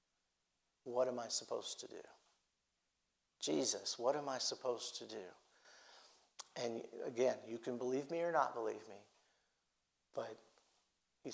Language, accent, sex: English, American, male